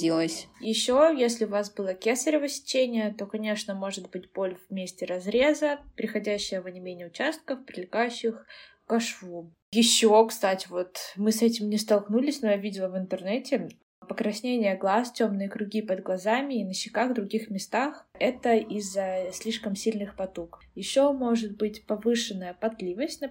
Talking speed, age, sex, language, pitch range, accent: 150 wpm, 20-39, female, Russian, 195-230 Hz, native